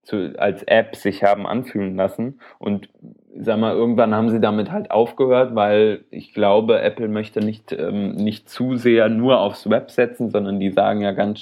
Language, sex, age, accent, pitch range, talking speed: German, male, 20-39, German, 100-110 Hz, 185 wpm